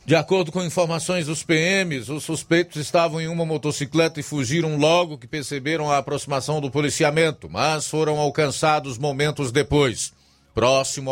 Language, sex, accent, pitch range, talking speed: Portuguese, male, Brazilian, 130-155 Hz, 145 wpm